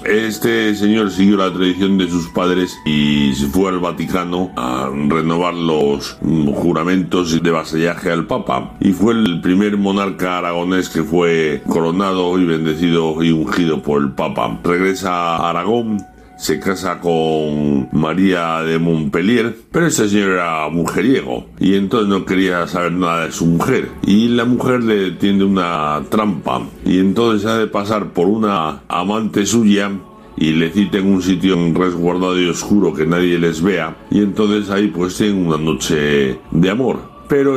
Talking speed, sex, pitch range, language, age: 160 wpm, male, 85-100 Hz, Spanish, 60-79